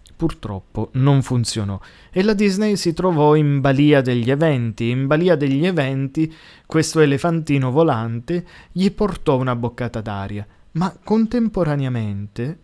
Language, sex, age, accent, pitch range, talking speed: Italian, male, 20-39, native, 115-165 Hz, 125 wpm